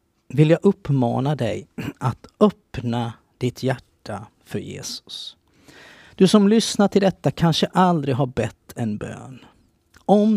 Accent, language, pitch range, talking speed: native, Swedish, 120-170 Hz, 125 wpm